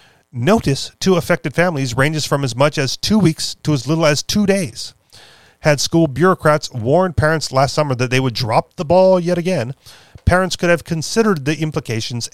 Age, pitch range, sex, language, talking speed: 40-59, 125-165 Hz, male, English, 185 wpm